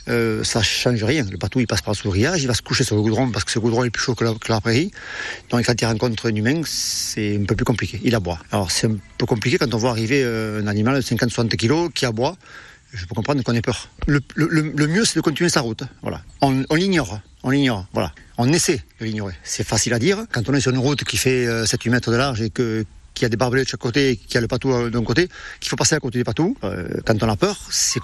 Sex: male